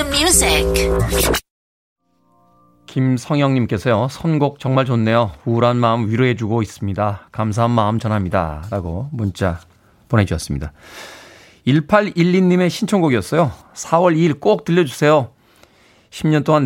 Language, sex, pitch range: Korean, male, 105-150 Hz